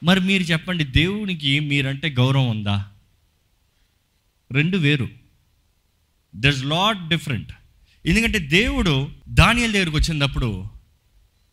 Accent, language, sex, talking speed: native, Telugu, male, 85 wpm